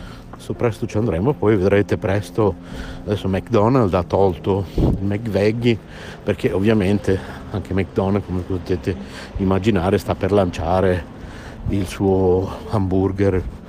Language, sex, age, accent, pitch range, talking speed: Italian, male, 50-69, native, 90-110 Hz, 115 wpm